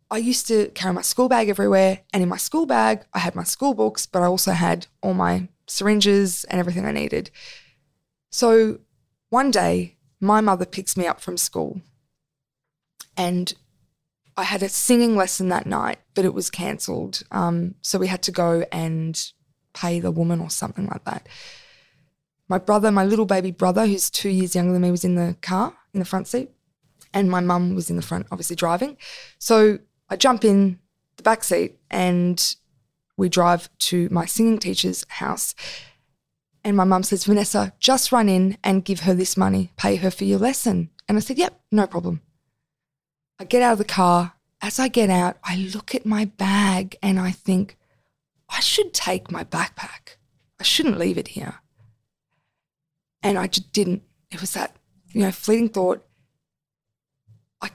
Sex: female